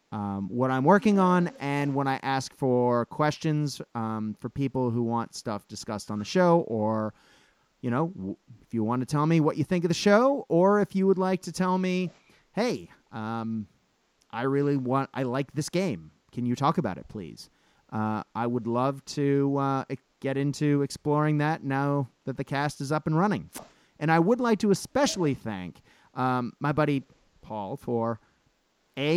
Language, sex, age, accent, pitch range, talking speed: English, male, 30-49, American, 115-165 Hz, 185 wpm